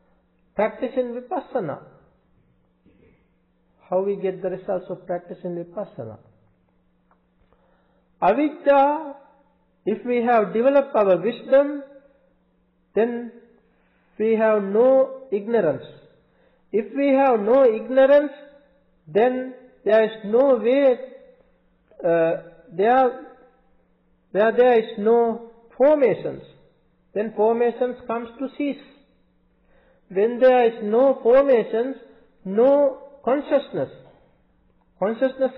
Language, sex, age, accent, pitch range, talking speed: English, male, 50-69, Indian, 215-265 Hz, 90 wpm